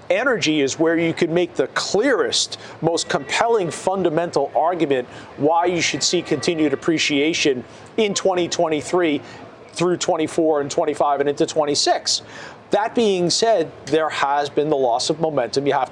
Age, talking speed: 40-59, 145 wpm